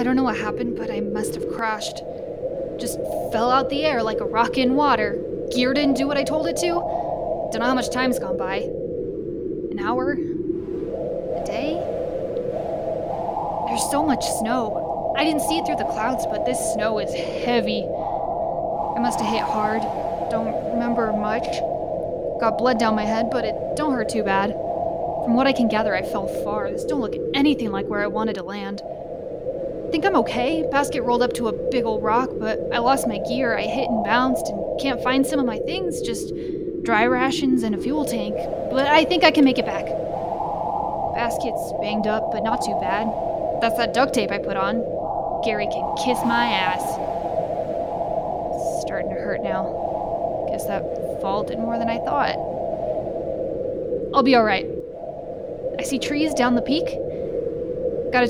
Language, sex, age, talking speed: English, female, 10-29, 180 wpm